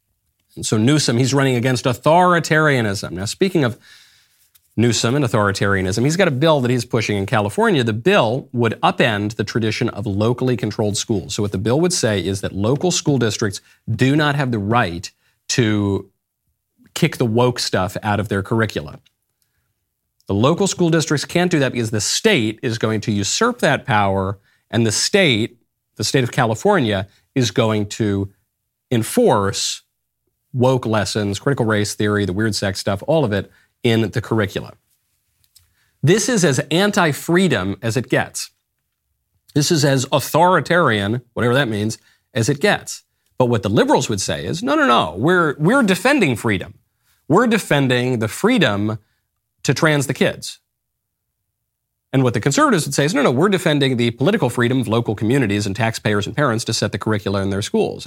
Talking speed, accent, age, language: 170 wpm, American, 40-59, English